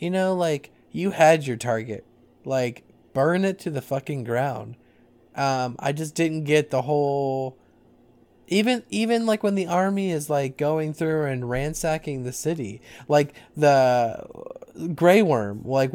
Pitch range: 120-150 Hz